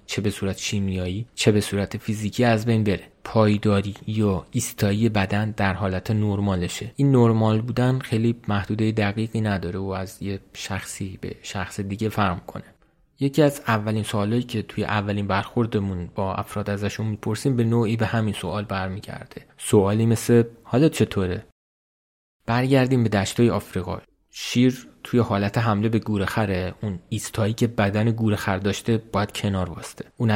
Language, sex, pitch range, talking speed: Persian, male, 100-110 Hz, 150 wpm